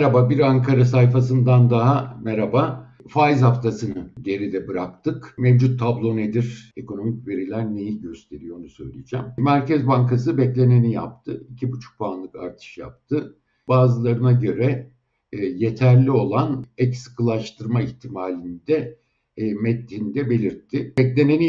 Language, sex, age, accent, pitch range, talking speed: Turkish, male, 60-79, native, 115-130 Hz, 105 wpm